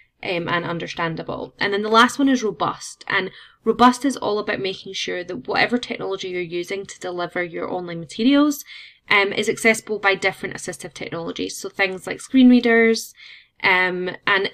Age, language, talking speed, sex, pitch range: 20-39, English, 170 wpm, female, 180-225 Hz